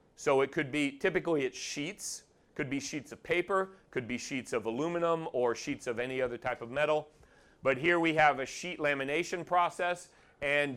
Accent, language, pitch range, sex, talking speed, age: American, English, 130-165 Hz, male, 190 wpm, 40-59